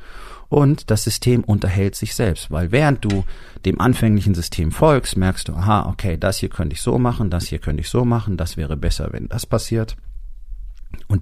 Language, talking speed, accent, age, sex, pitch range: German, 195 wpm, German, 40-59, male, 85-115 Hz